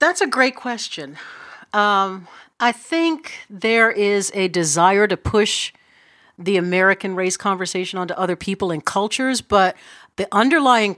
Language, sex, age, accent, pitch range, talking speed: English, female, 50-69, American, 180-235 Hz, 135 wpm